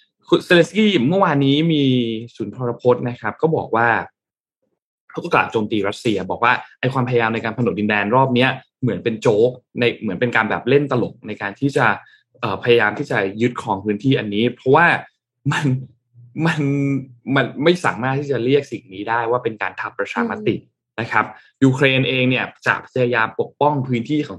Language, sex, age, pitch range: Thai, male, 20-39, 110-140 Hz